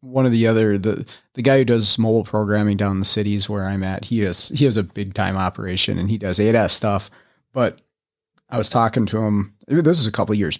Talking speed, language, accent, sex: 245 wpm, English, American, male